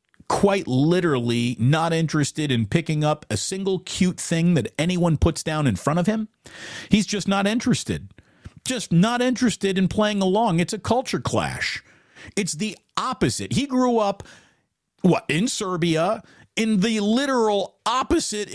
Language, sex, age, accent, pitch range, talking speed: English, male, 50-69, American, 175-245 Hz, 150 wpm